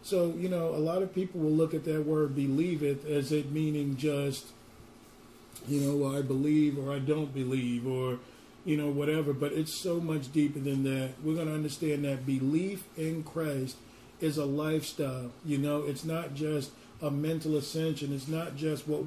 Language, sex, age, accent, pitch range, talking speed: English, male, 40-59, American, 135-160 Hz, 185 wpm